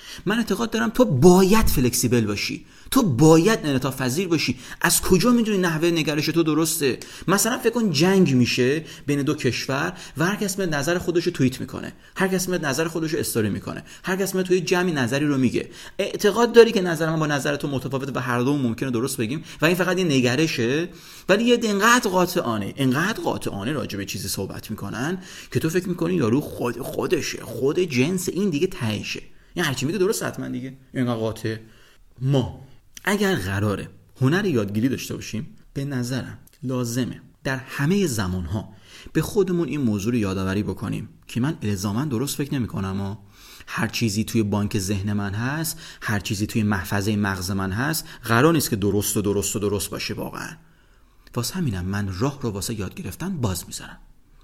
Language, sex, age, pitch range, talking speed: English, male, 30-49, 110-170 Hz, 175 wpm